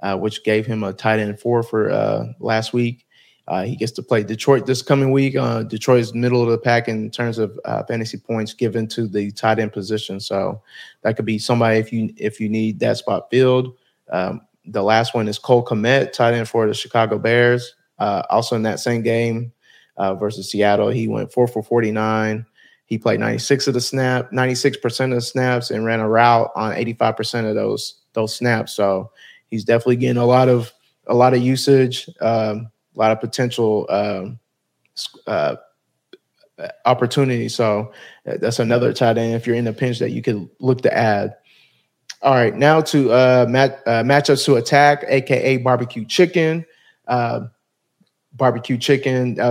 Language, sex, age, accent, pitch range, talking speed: English, male, 30-49, American, 110-130 Hz, 190 wpm